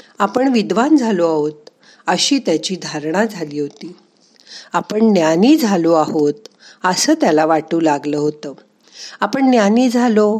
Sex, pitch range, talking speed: female, 165-235 Hz, 120 wpm